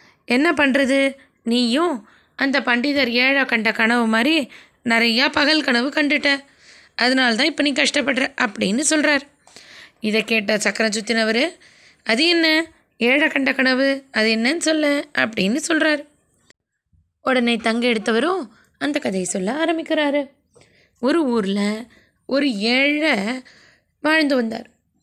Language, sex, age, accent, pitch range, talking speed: Tamil, female, 20-39, native, 225-285 Hz, 105 wpm